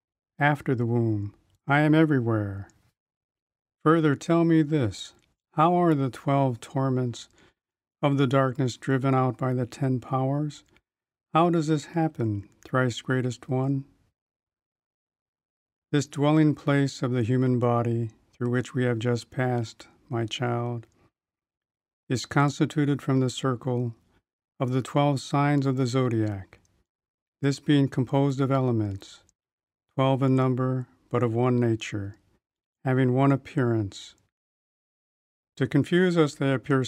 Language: English